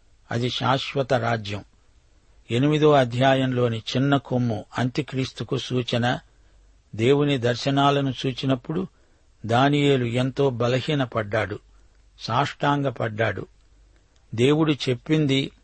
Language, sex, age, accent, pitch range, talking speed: Telugu, male, 60-79, native, 115-140 Hz, 70 wpm